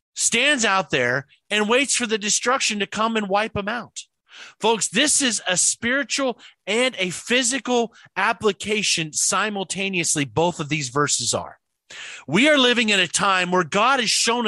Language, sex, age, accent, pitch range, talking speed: English, male, 40-59, American, 180-230 Hz, 160 wpm